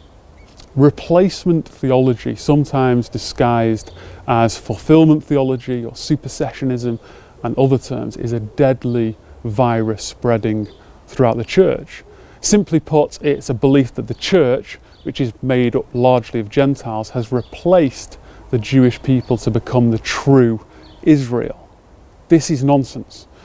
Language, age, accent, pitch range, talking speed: English, 30-49, British, 120-160 Hz, 125 wpm